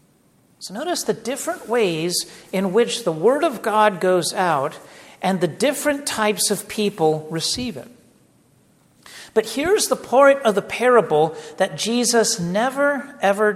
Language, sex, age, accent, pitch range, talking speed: English, male, 50-69, American, 150-205 Hz, 140 wpm